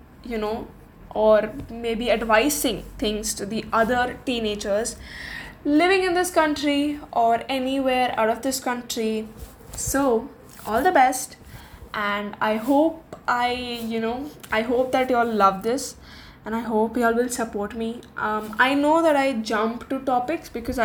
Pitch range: 225-275 Hz